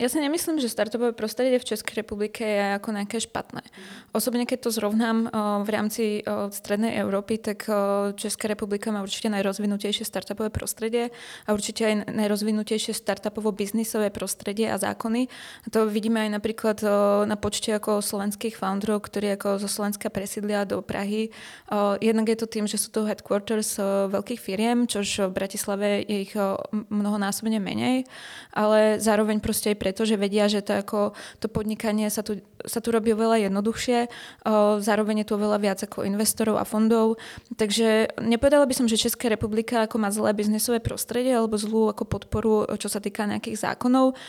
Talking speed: 160 wpm